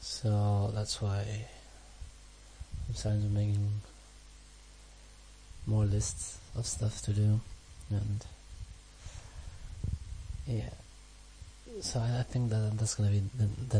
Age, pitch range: 30-49, 90-110 Hz